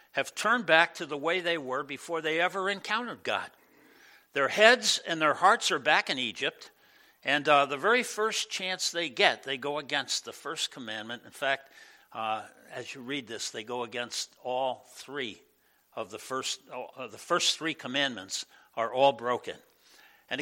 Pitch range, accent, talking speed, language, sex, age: 140-215 Hz, American, 175 wpm, English, male, 60-79